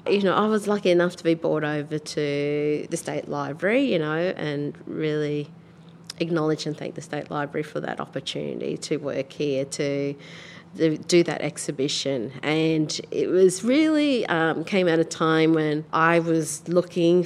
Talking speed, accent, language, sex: 165 wpm, Australian, English, female